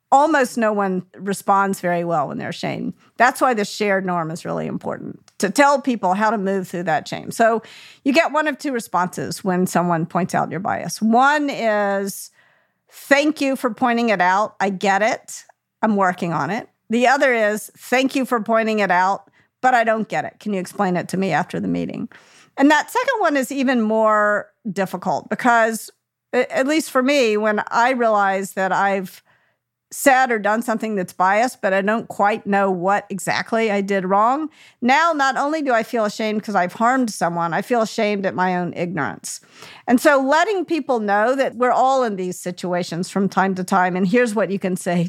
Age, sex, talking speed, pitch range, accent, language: 50-69, female, 200 wpm, 190-250 Hz, American, English